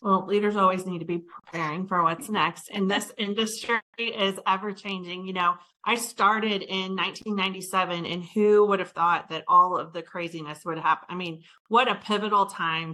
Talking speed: 185 wpm